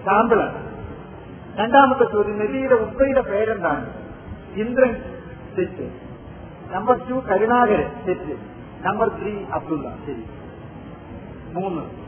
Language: Malayalam